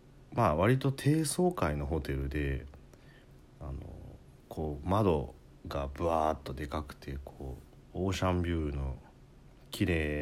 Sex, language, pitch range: male, Japanese, 75-105 Hz